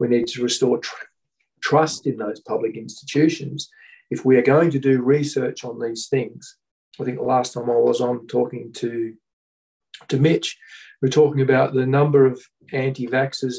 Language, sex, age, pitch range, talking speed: English, male, 50-69, 125-145 Hz, 175 wpm